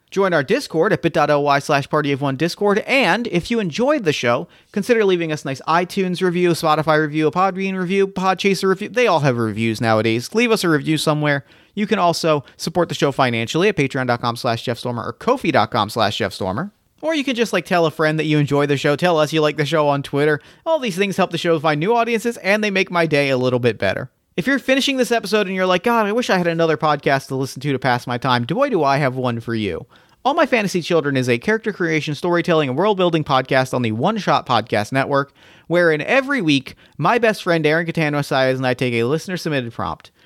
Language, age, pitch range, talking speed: English, 40-59, 135-190 Hz, 230 wpm